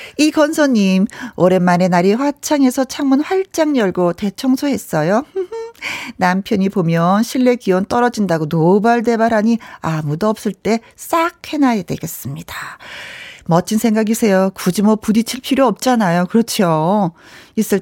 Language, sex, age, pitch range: Korean, female, 40-59, 180-260 Hz